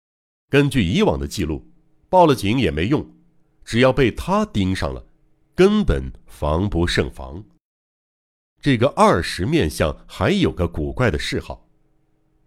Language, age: Chinese, 60-79